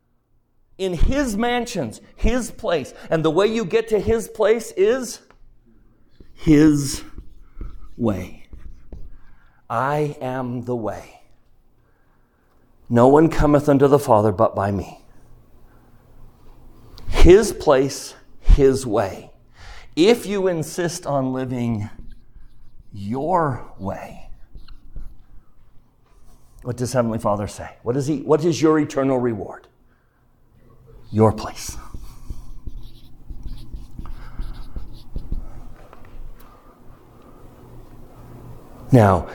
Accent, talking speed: American, 80 wpm